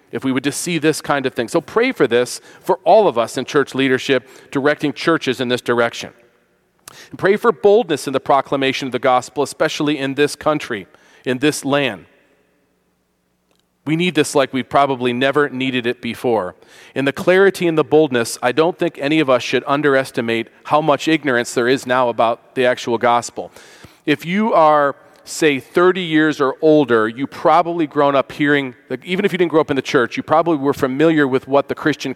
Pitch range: 130-160 Hz